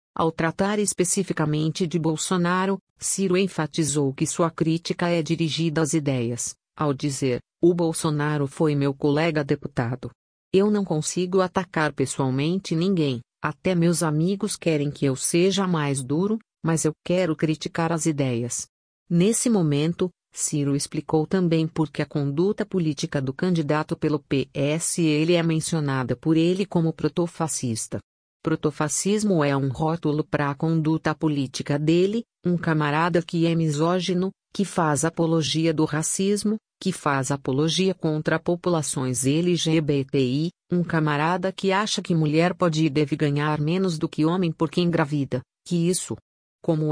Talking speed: 140 wpm